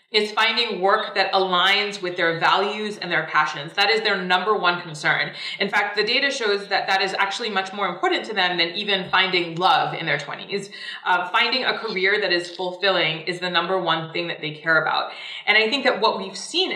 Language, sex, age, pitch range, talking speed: English, female, 20-39, 175-225 Hz, 220 wpm